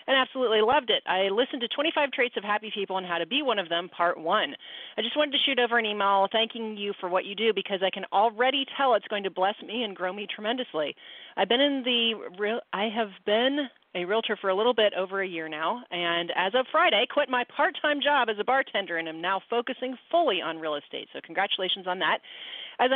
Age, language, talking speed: 40-59, English, 235 wpm